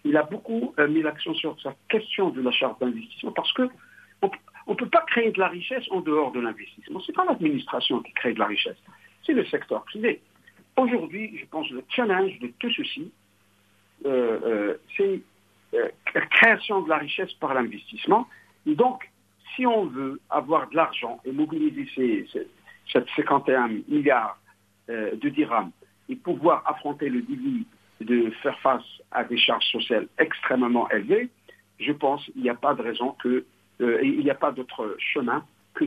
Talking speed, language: 180 wpm, English